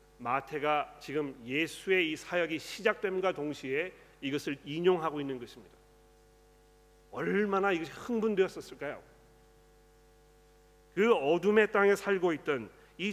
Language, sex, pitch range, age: Korean, male, 135-180 Hz, 40-59